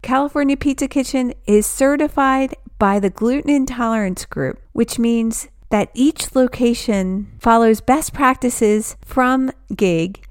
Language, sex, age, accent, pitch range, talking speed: English, female, 40-59, American, 205-255 Hz, 115 wpm